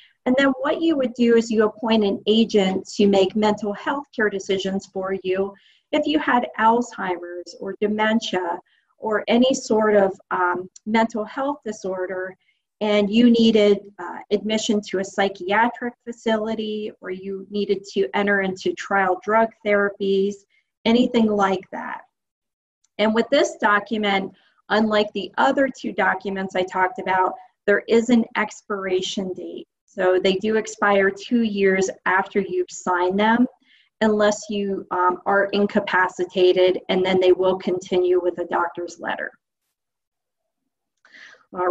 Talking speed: 140 wpm